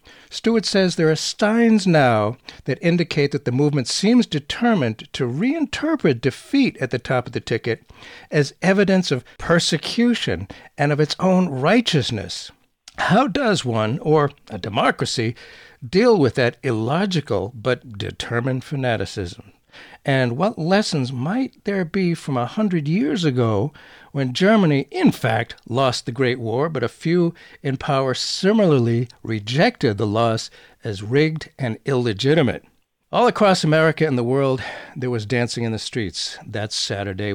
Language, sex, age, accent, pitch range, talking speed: English, male, 60-79, American, 120-175 Hz, 145 wpm